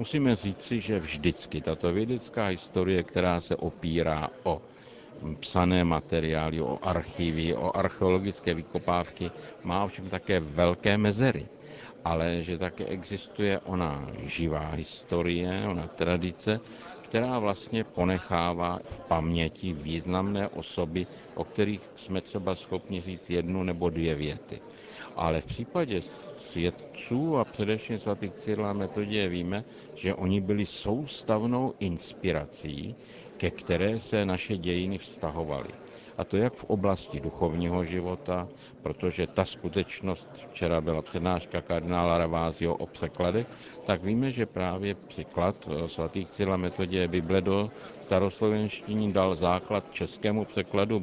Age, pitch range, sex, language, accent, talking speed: 60-79, 85-100 Hz, male, Czech, native, 120 wpm